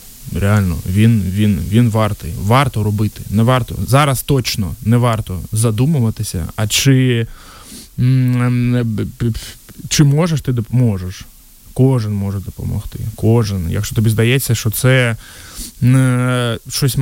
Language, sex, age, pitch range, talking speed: Ukrainian, male, 20-39, 100-125 Hz, 105 wpm